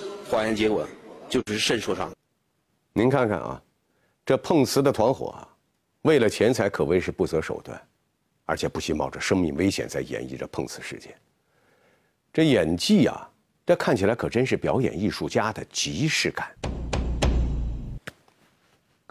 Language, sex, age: Chinese, male, 50-69